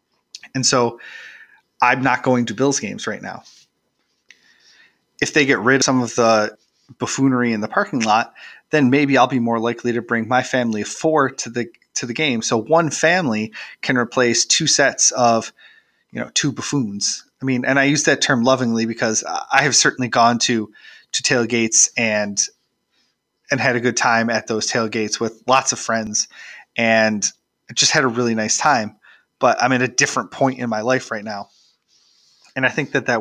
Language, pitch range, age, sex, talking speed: English, 115-135 Hz, 30-49, male, 190 wpm